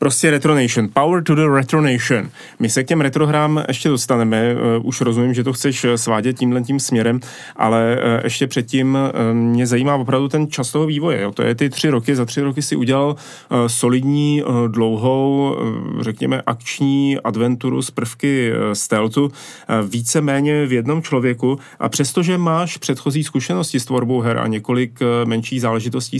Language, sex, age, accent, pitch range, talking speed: Czech, male, 30-49, native, 115-140 Hz, 150 wpm